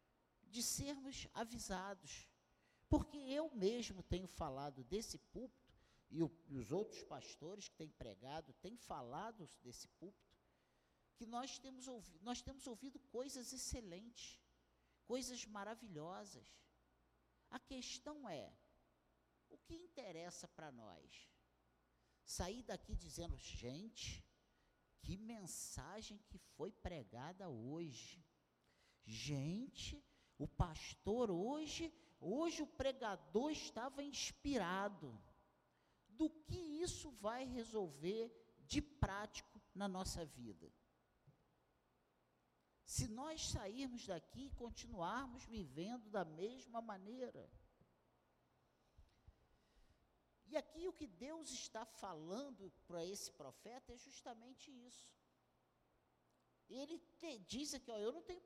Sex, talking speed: male, 100 wpm